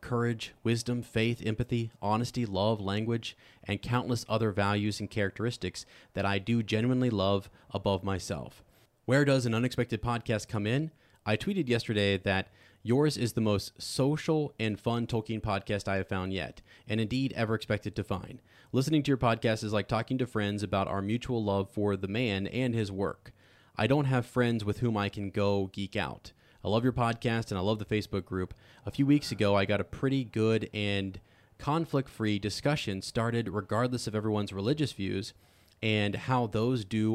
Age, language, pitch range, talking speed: 30-49, English, 100-120 Hz, 180 wpm